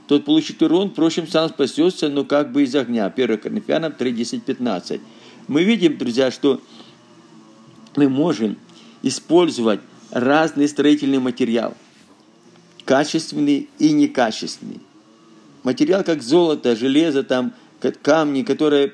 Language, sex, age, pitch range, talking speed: Russian, male, 50-69, 125-165 Hz, 110 wpm